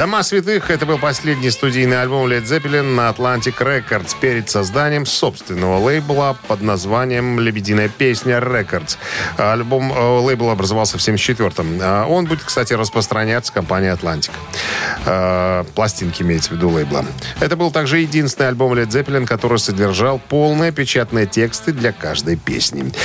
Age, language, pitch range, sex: 40-59, Russian, 105-140 Hz, male